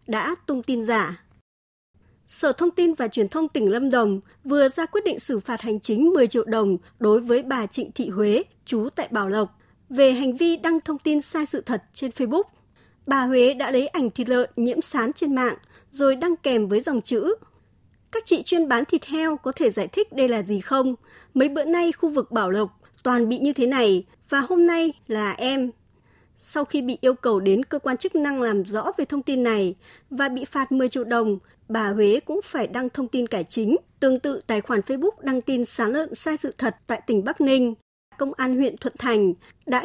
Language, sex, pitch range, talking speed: Vietnamese, male, 225-290 Hz, 220 wpm